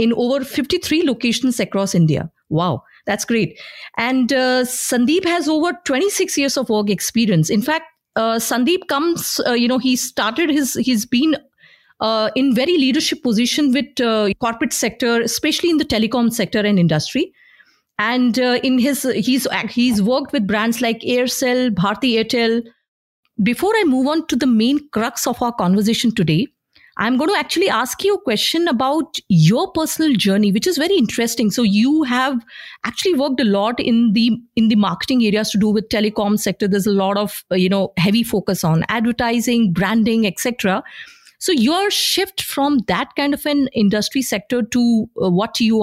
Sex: female